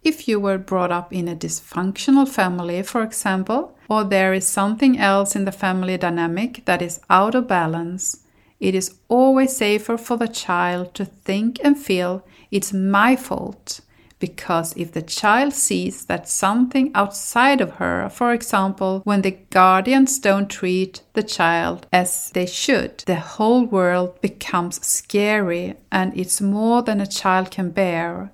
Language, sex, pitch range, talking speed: English, female, 180-220 Hz, 155 wpm